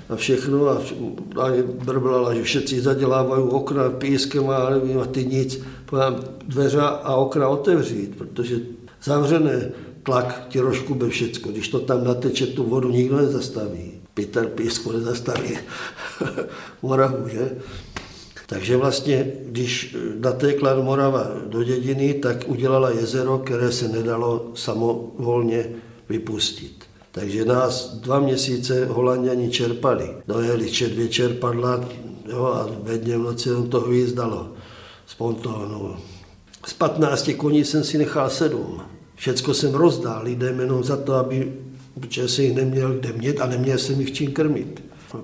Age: 60-79